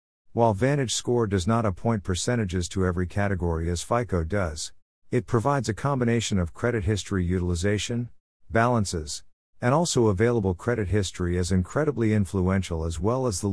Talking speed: 150 wpm